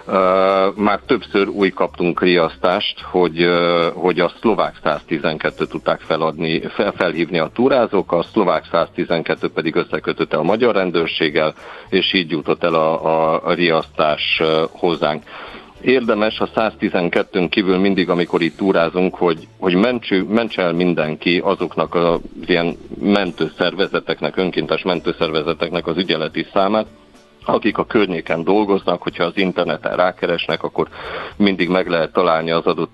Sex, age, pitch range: male, 50-69, 80-95 Hz